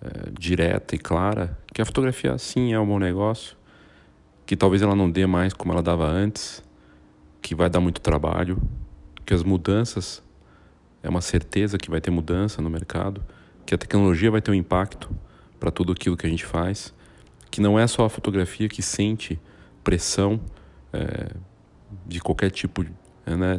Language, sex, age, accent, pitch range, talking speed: English, male, 40-59, Brazilian, 90-105 Hz, 170 wpm